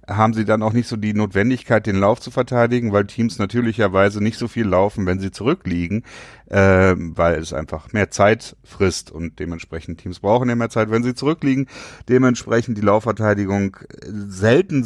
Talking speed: 175 wpm